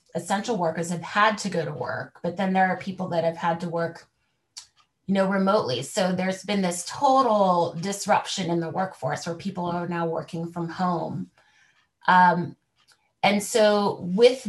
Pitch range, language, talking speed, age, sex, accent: 170-195 Hz, English, 170 wpm, 30-49, female, American